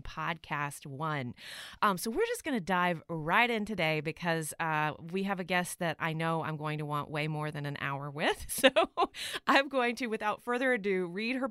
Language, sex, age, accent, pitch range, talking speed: English, female, 30-49, American, 160-225 Hz, 210 wpm